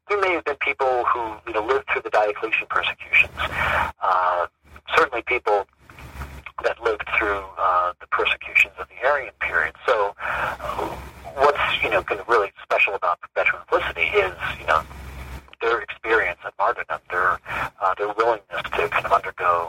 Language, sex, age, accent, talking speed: English, male, 40-59, American, 160 wpm